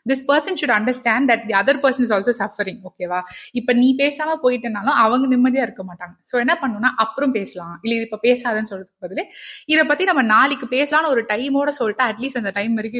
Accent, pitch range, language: native, 200-270 Hz, Tamil